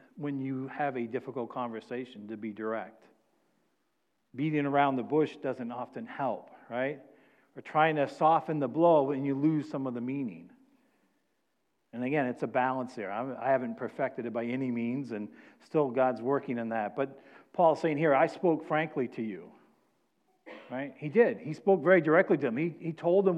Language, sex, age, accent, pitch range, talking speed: English, male, 50-69, American, 130-155 Hz, 180 wpm